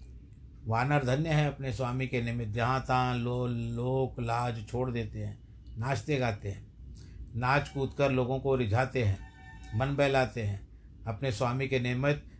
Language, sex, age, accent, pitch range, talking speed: Hindi, male, 60-79, native, 110-130 Hz, 155 wpm